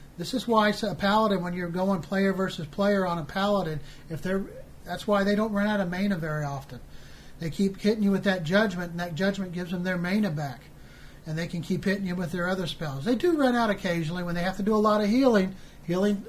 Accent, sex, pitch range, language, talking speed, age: American, male, 175-210 Hz, English, 245 wpm, 40-59